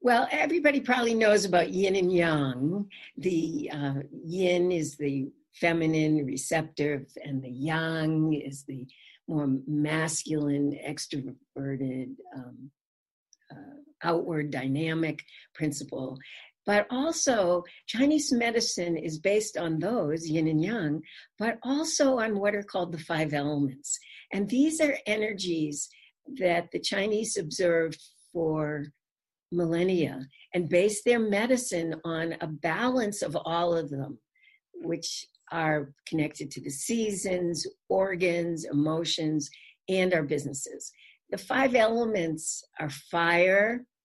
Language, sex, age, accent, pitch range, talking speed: English, female, 60-79, American, 150-205 Hz, 115 wpm